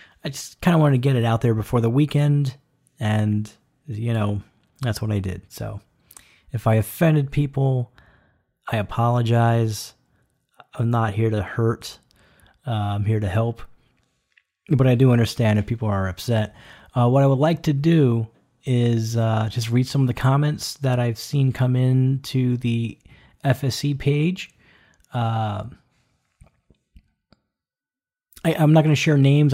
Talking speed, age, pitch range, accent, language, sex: 155 wpm, 30-49, 110-135 Hz, American, English, male